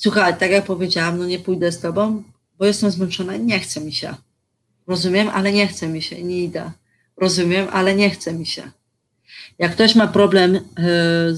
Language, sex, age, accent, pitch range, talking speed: Polish, female, 30-49, native, 165-195 Hz, 190 wpm